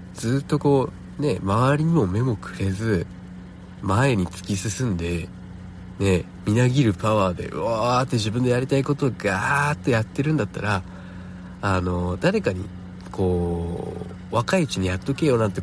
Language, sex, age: Japanese, male, 50-69